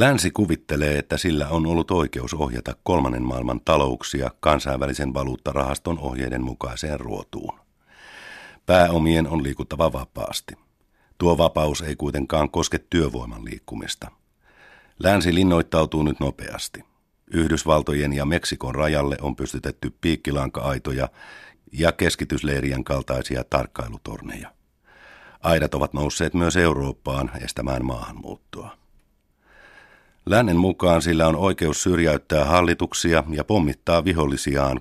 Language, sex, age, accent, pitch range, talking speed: Finnish, male, 50-69, native, 70-85 Hz, 100 wpm